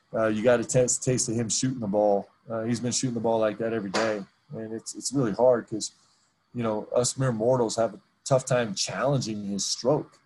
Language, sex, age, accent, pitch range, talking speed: English, male, 20-39, American, 105-120 Hz, 235 wpm